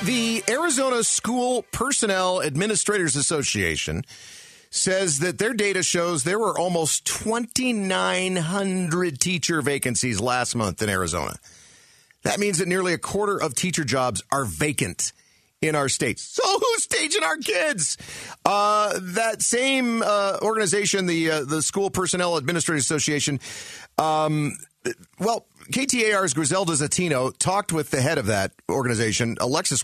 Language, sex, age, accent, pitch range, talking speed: English, male, 40-59, American, 140-190 Hz, 130 wpm